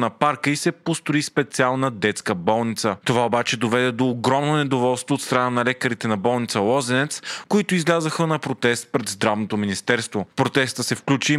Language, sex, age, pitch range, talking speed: Bulgarian, male, 30-49, 120-150 Hz, 175 wpm